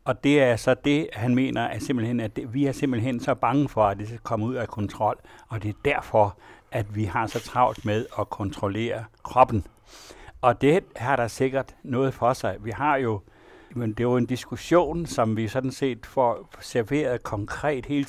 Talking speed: 200 wpm